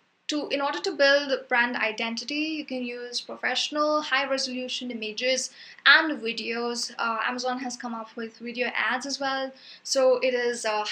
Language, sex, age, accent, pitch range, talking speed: English, female, 10-29, Indian, 245-290 Hz, 160 wpm